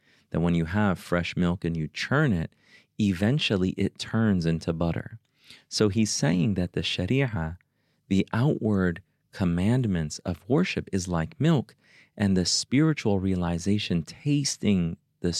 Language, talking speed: English, 135 wpm